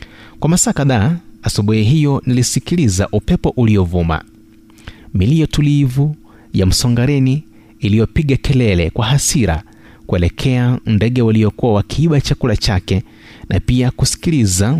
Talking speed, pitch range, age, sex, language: 100 wpm, 100-120 Hz, 30-49, male, Swahili